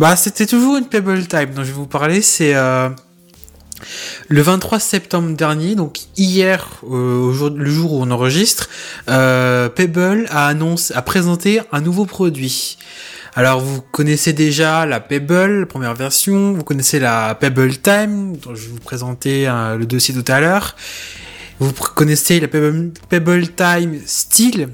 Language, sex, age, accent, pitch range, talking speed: French, male, 20-39, French, 125-170 Hz, 160 wpm